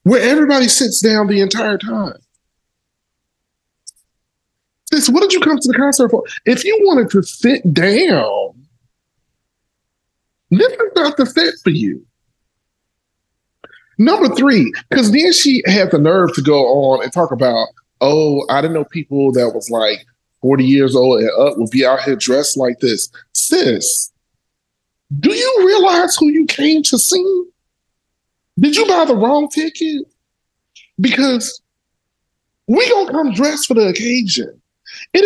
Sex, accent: male, American